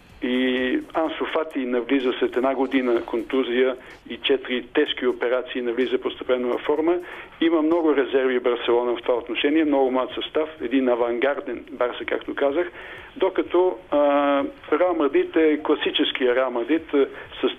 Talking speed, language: 125 wpm, Bulgarian